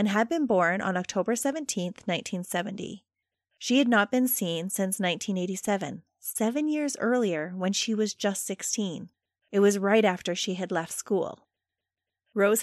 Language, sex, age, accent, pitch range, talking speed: English, female, 30-49, American, 190-240 Hz, 150 wpm